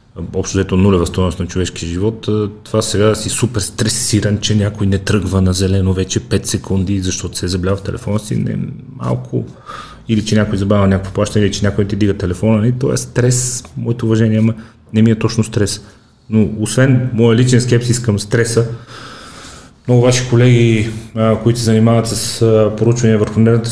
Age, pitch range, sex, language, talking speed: 30-49, 95-110 Hz, male, Bulgarian, 175 wpm